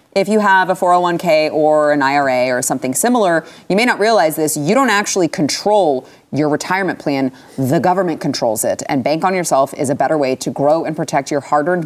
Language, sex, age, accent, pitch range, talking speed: English, female, 30-49, American, 150-190 Hz, 205 wpm